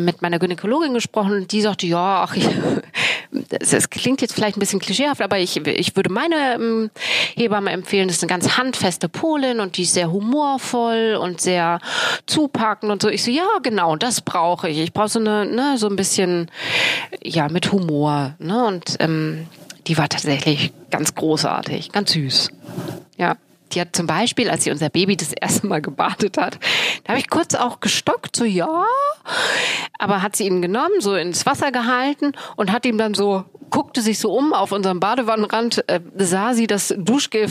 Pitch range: 175-230 Hz